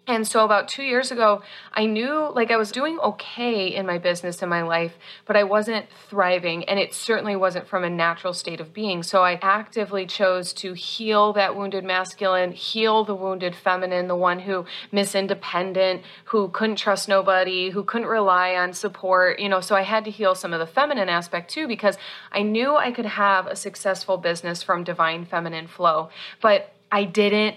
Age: 30-49